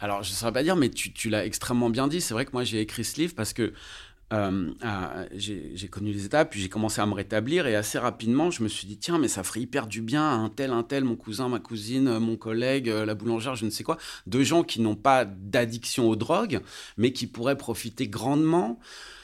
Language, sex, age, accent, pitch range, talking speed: French, male, 30-49, French, 105-135 Hz, 250 wpm